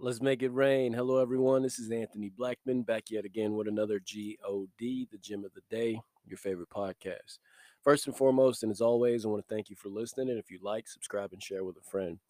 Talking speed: 230 wpm